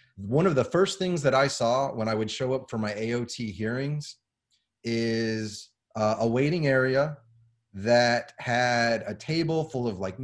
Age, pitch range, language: 30-49, 110-140 Hz, English